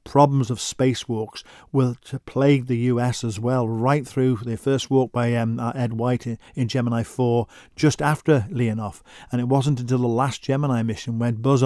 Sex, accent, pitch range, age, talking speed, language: male, British, 115-135 Hz, 50-69, 185 wpm, English